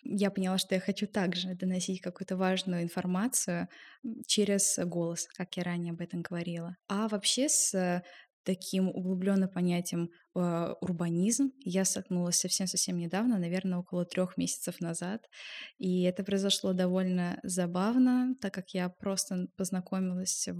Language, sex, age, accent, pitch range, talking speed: Russian, female, 20-39, native, 175-200 Hz, 130 wpm